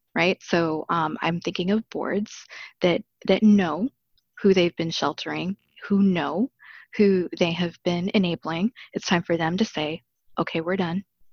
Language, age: English, 20-39